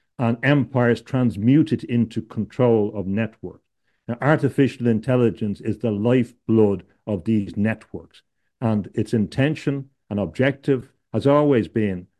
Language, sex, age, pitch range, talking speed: English, male, 60-79, 105-125 Hz, 115 wpm